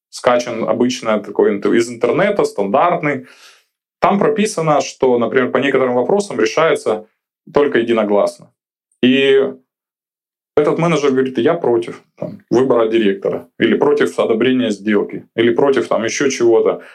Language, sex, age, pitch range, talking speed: Russian, male, 20-39, 120-175 Hz, 115 wpm